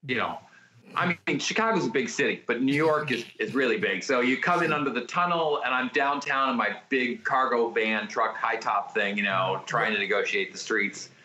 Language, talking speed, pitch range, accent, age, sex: English, 220 wpm, 120-155 Hz, American, 40-59, male